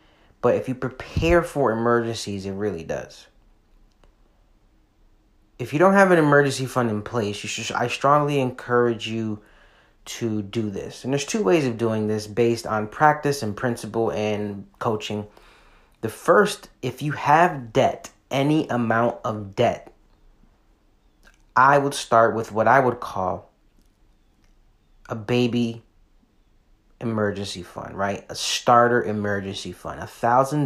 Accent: American